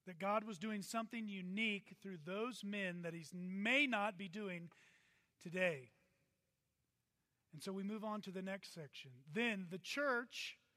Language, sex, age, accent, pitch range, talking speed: English, male, 40-59, American, 200-255 Hz, 155 wpm